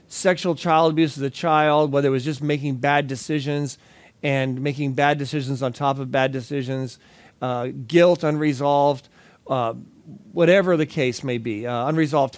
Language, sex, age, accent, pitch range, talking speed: English, male, 40-59, American, 130-155 Hz, 160 wpm